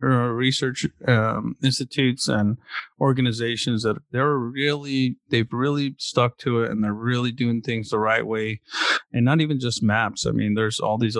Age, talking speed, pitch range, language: 30-49, 170 wpm, 105-125 Hz, English